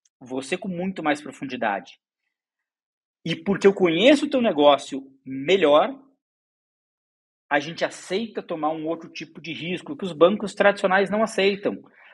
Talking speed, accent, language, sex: 140 wpm, Brazilian, Portuguese, male